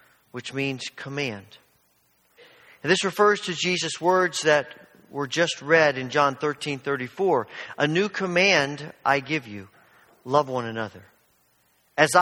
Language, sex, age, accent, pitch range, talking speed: English, male, 50-69, American, 110-155 Hz, 135 wpm